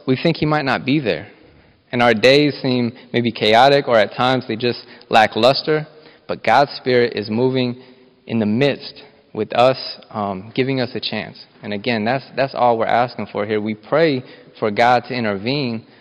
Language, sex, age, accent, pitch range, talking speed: English, male, 20-39, American, 120-145 Hz, 185 wpm